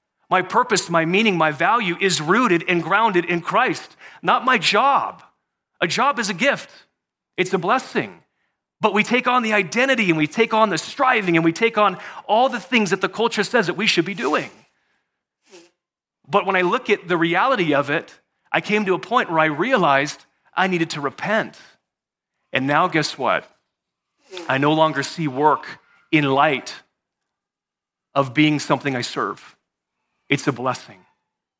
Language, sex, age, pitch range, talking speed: English, male, 30-49, 155-205 Hz, 175 wpm